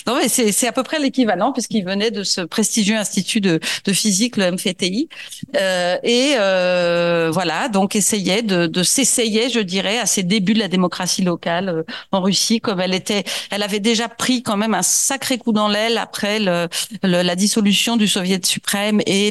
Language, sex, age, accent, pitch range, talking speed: French, female, 40-59, French, 185-225 Hz, 195 wpm